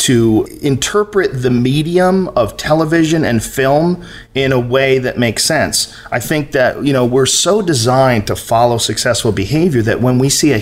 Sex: male